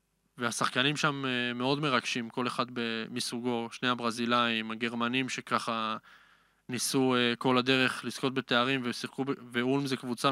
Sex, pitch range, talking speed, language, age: male, 115-135 Hz, 115 wpm, Hebrew, 20-39